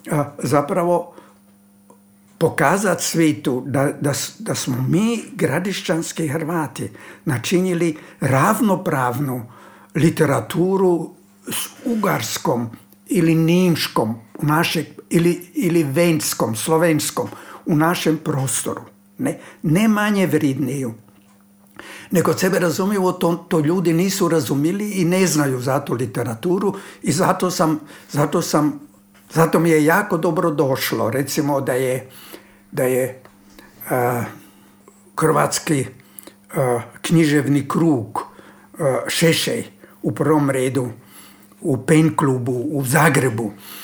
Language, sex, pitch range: Croatian, male, 135-170 Hz